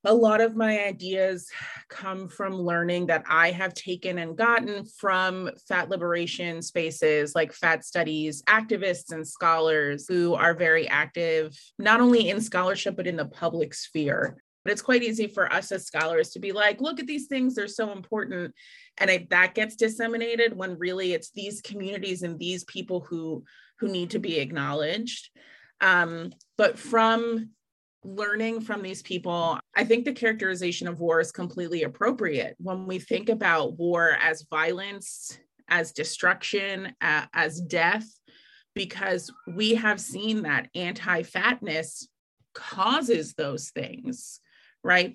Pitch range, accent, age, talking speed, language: 175-225 Hz, American, 30-49, 150 wpm, English